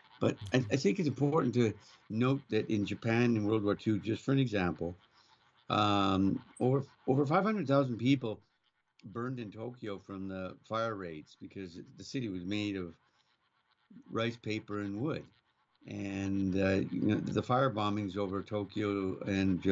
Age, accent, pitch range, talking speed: 60-79, American, 100-125 Hz, 150 wpm